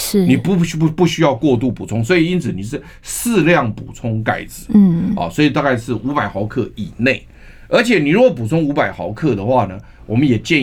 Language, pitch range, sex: Chinese, 115-175 Hz, male